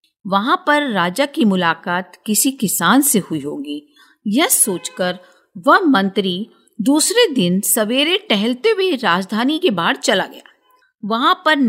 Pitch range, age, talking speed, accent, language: 180-285 Hz, 50-69, 125 wpm, native, Hindi